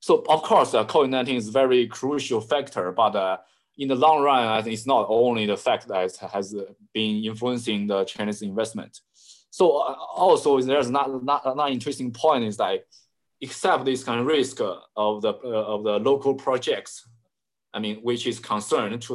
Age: 20-39